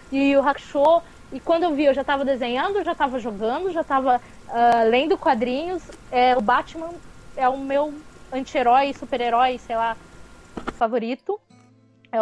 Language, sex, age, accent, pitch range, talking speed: English, female, 20-39, Brazilian, 235-305 Hz, 150 wpm